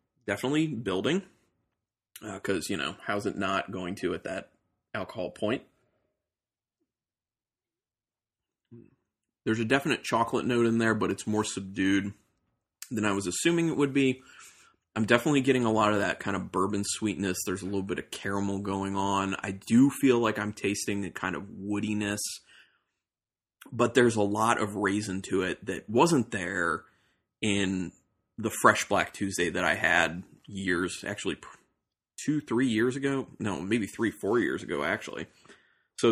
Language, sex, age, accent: English, male, 20-39, American